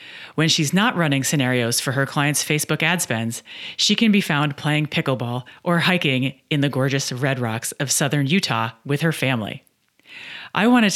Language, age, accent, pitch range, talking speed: English, 40-59, American, 130-175 Hz, 175 wpm